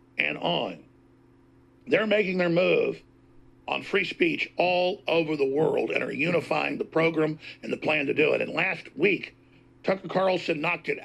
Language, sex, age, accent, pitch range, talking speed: English, male, 50-69, American, 170-220 Hz, 165 wpm